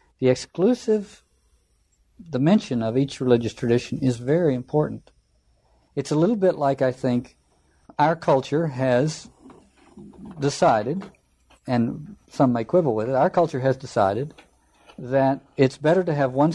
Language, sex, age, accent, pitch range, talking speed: English, male, 50-69, American, 120-160 Hz, 135 wpm